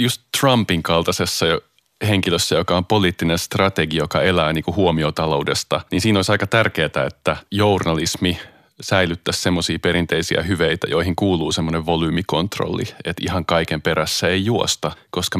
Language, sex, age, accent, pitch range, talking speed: Finnish, male, 30-49, native, 85-100 Hz, 135 wpm